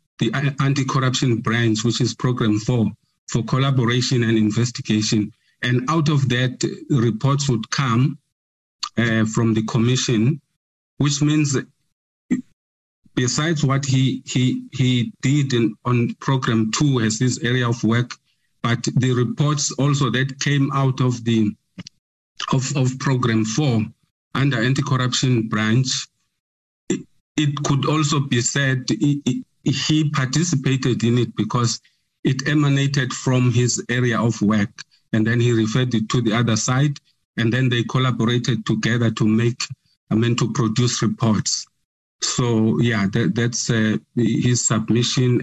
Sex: male